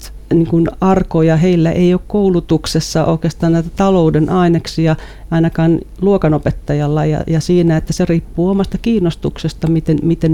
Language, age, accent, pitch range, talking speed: Finnish, 40-59, native, 155-170 Hz, 130 wpm